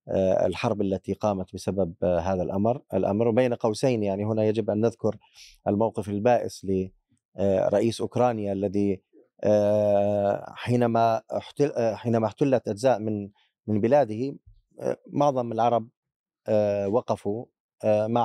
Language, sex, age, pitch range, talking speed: Arabic, male, 30-49, 105-130 Hz, 100 wpm